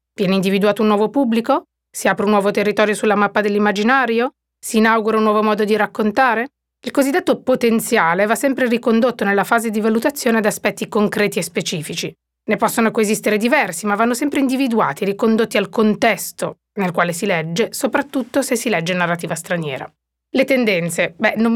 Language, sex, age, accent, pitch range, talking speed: Italian, female, 30-49, native, 195-230 Hz, 170 wpm